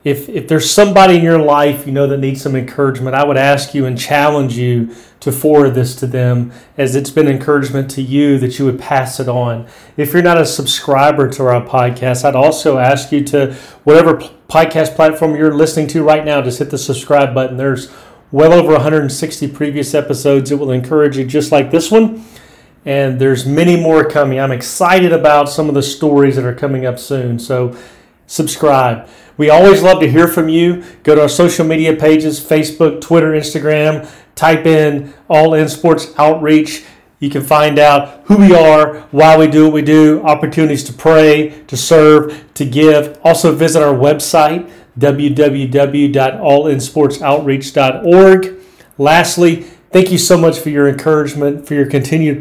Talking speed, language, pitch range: 175 wpm, English, 135-155 Hz